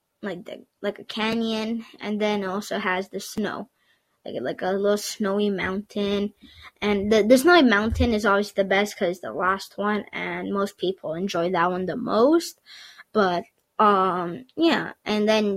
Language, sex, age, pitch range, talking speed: English, female, 20-39, 195-230 Hz, 170 wpm